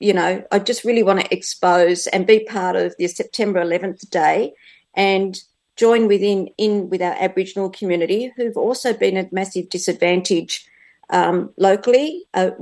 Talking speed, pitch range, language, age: 155 wpm, 185-220 Hz, English, 50-69